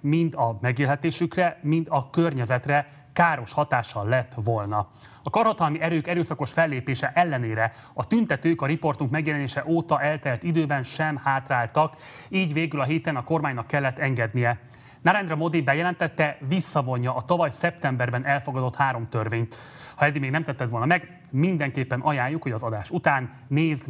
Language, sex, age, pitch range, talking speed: Hungarian, male, 30-49, 125-155 Hz, 145 wpm